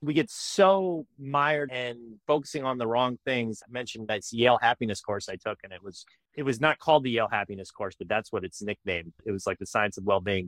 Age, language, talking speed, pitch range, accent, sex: 30-49, English, 235 wpm, 110-155 Hz, American, male